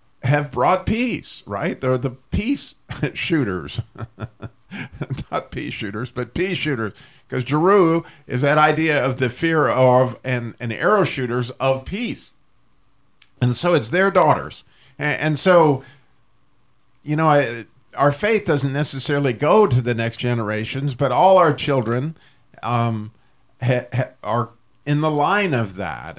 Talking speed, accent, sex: 135 wpm, American, male